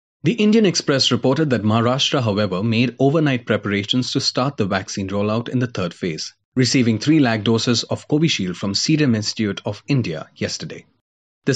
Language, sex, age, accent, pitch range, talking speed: English, male, 30-49, Indian, 105-130 Hz, 165 wpm